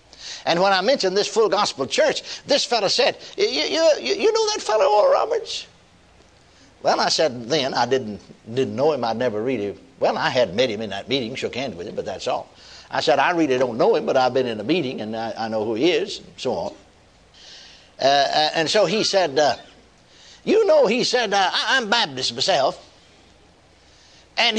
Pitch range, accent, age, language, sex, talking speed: 155-255 Hz, American, 60-79, English, male, 205 wpm